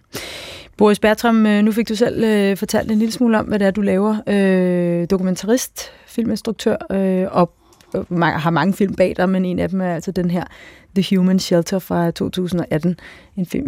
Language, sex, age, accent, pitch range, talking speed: Danish, female, 30-49, native, 170-195 Hz, 170 wpm